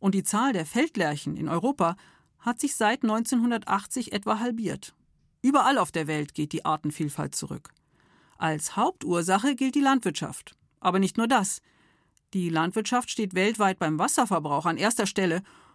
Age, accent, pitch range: 50-69, German, 175-250 Hz